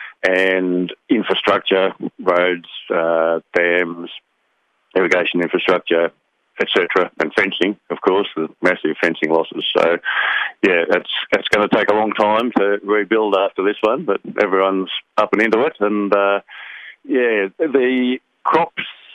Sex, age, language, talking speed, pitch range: male, 50-69, English, 130 wpm, 90-105 Hz